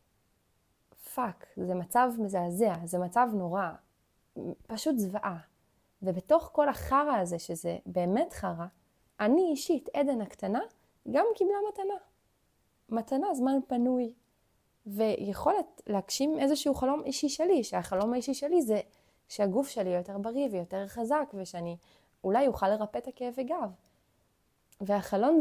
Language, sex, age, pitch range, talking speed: Hebrew, female, 20-39, 180-255 Hz, 115 wpm